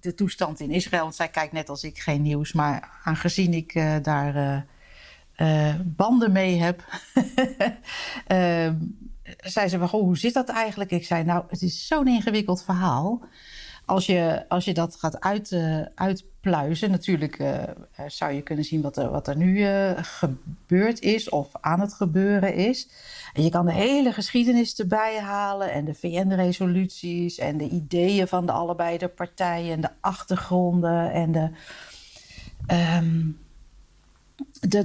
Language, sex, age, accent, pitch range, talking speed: Dutch, female, 60-79, Dutch, 165-195 Hz, 150 wpm